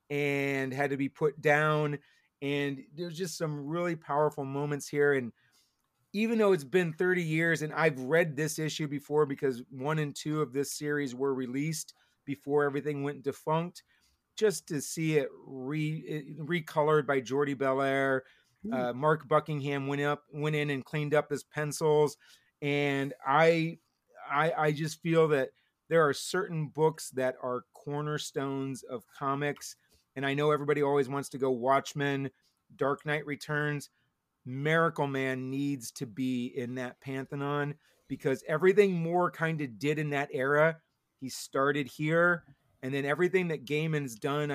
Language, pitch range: English, 135-155 Hz